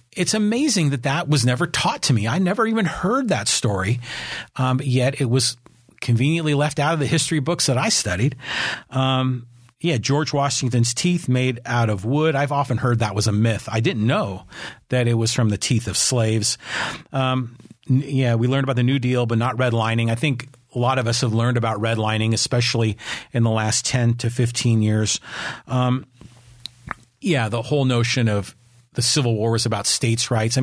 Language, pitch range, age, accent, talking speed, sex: English, 115-130 Hz, 40-59, American, 195 wpm, male